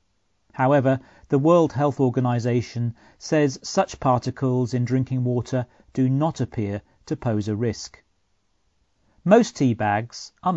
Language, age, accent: Chinese, 40-59, British